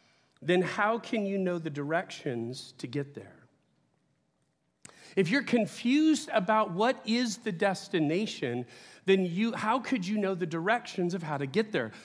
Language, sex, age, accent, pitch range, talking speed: English, male, 40-59, American, 125-180 Hz, 155 wpm